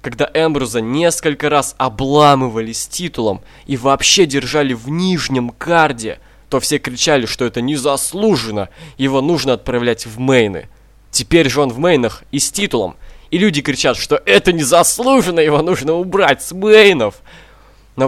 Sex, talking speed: male, 145 wpm